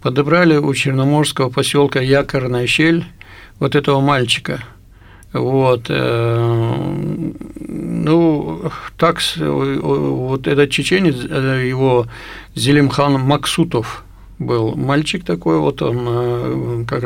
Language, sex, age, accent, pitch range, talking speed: Russian, male, 60-79, native, 125-150 Hz, 85 wpm